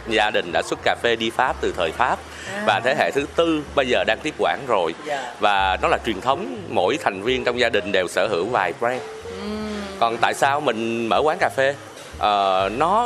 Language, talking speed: Vietnamese, 215 wpm